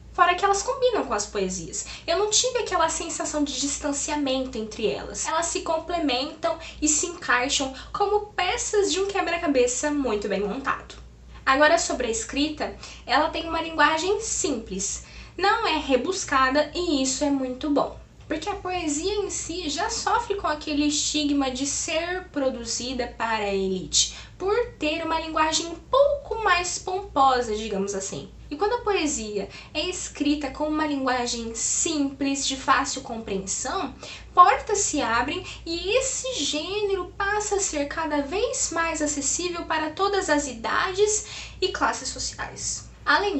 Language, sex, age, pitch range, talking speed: Portuguese, female, 10-29, 265-365 Hz, 140 wpm